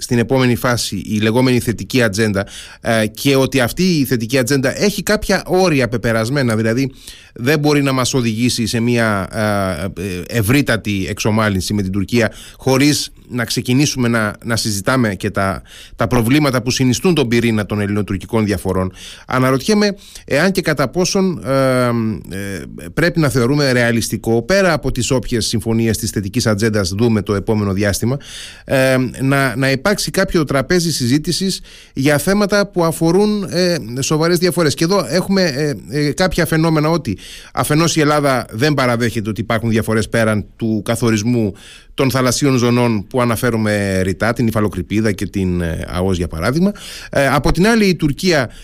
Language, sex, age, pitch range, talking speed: Greek, male, 30-49, 110-145 Hz, 145 wpm